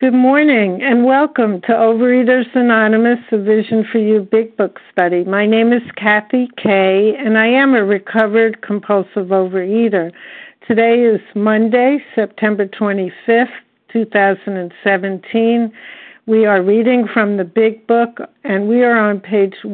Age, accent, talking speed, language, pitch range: 60-79, American, 135 wpm, English, 200-230 Hz